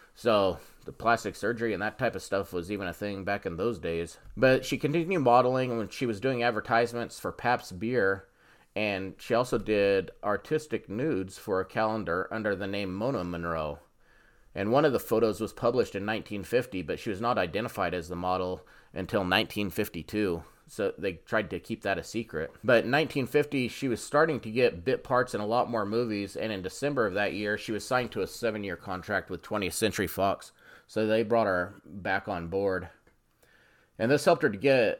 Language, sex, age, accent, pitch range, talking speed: English, male, 30-49, American, 100-120 Hz, 195 wpm